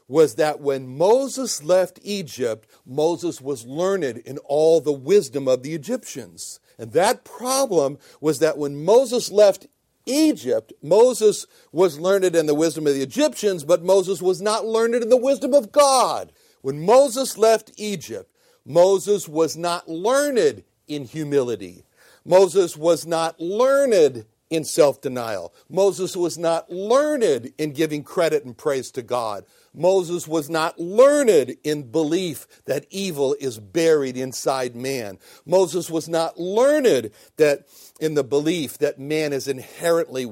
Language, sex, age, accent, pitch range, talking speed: English, male, 60-79, American, 155-205 Hz, 140 wpm